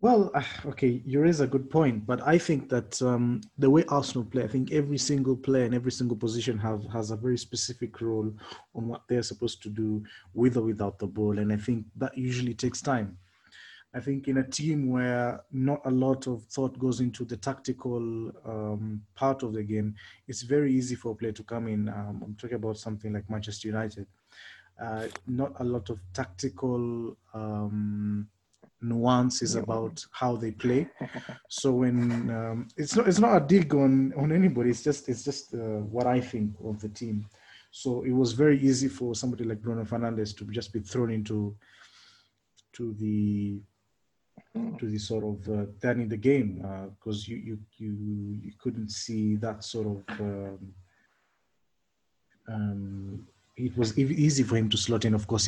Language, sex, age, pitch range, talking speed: English, male, 30-49, 105-130 Hz, 185 wpm